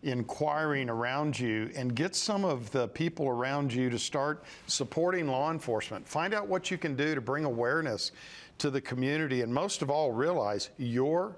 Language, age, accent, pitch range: English, 50-69, American, 125-160 Hz